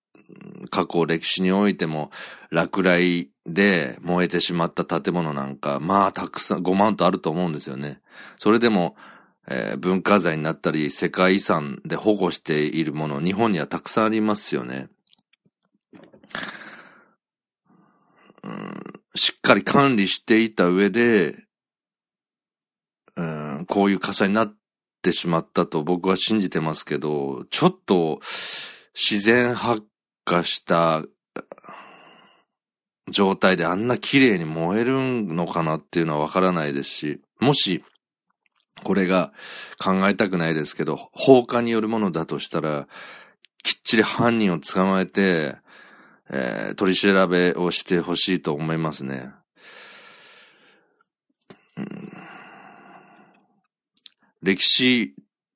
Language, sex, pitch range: Japanese, male, 80-105 Hz